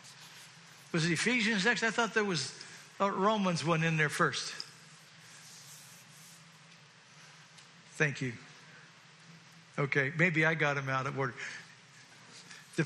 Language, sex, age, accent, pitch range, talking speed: English, male, 60-79, American, 165-225 Hz, 115 wpm